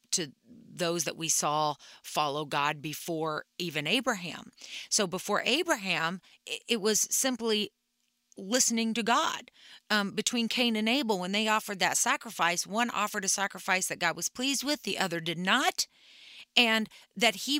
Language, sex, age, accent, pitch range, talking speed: English, female, 40-59, American, 175-240 Hz, 155 wpm